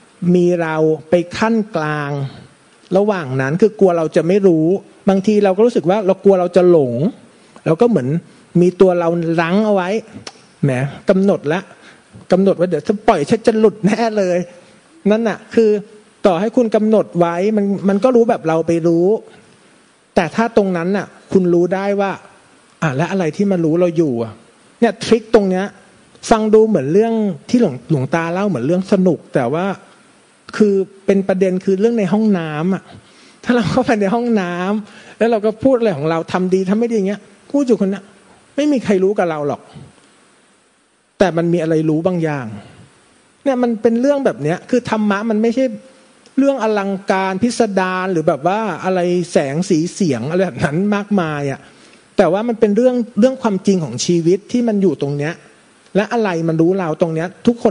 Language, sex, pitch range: Thai, male, 175-220 Hz